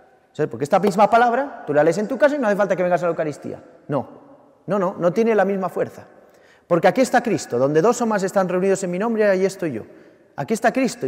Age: 30-49